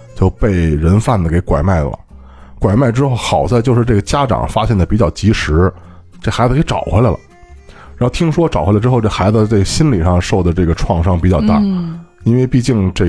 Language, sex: Chinese, male